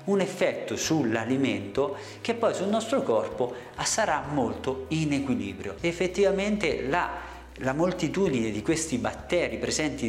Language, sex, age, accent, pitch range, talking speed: Italian, male, 50-69, native, 125-185 Hz, 120 wpm